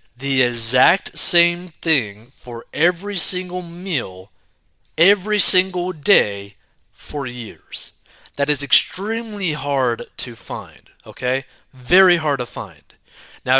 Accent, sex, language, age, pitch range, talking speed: American, male, English, 30-49, 115-155 Hz, 110 wpm